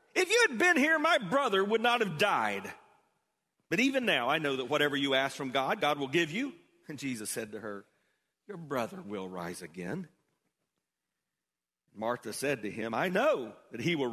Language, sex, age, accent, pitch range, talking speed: English, male, 40-59, American, 155-225 Hz, 190 wpm